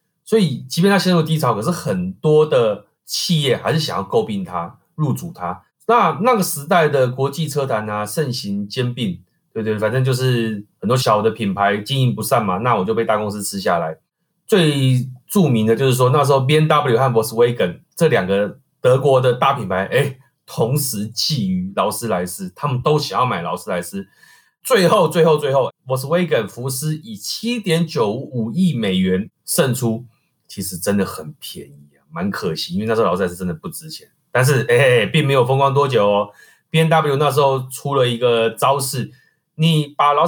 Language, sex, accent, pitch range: Chinese, male, native, 120-170 Hz